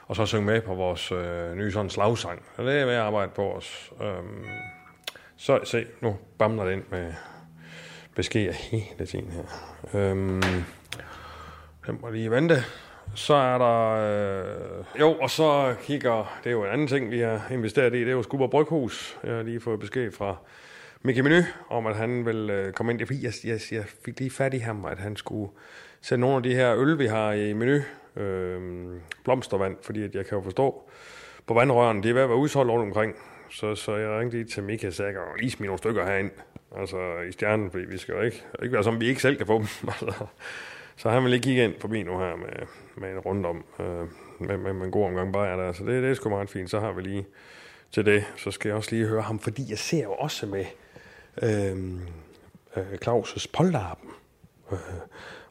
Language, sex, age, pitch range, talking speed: Danish, male, 30-49, 95-120 Hz, 215 wpm